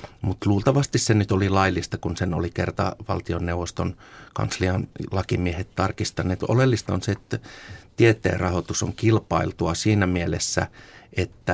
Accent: native